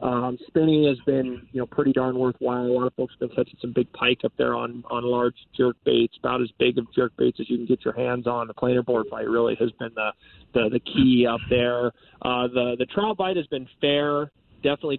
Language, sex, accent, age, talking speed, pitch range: English, male, American, 20-39, 245 wpm, 120-135 Hz